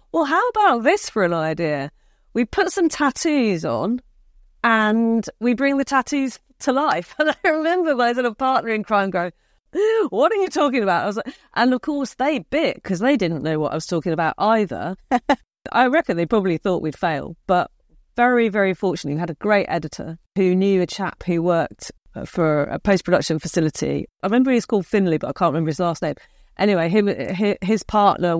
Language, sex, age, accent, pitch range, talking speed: English, female, 40-59, British, 170-265 Hz, 200 wpm